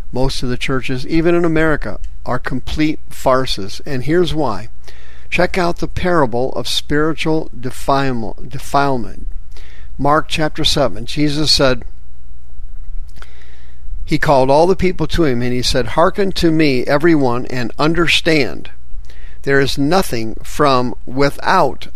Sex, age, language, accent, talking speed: male, 50-69, English, American, 125 wpm